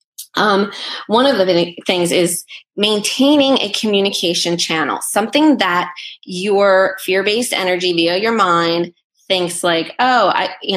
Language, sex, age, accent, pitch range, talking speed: English, female, 20-39, American, 170-205 Hz, 130 wpm